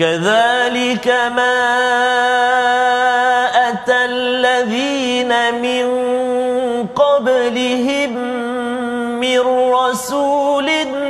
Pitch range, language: 235-265 Hz, Malayalam